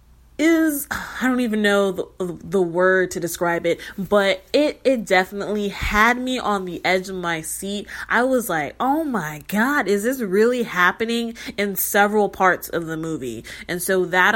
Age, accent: 20-39, American